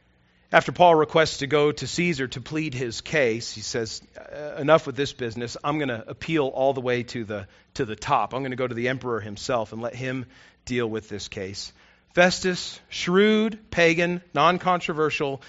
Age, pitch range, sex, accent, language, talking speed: 40-59, 130-195 Hz, male, American, English, 185 wpm